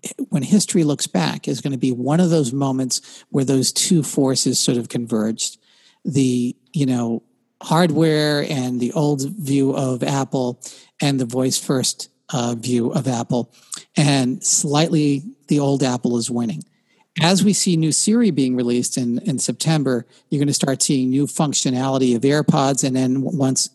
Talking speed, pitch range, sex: 165 wpm, 130-170 Hz, male